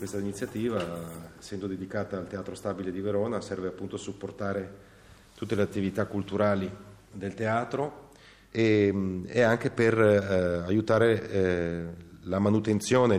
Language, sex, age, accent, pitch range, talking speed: Italian, male, 40-59, native, 90-100 Hz, 125 wpm